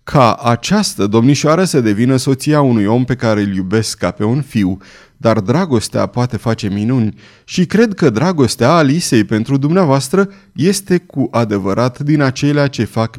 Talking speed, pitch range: 160 wpm, 110-160 Hz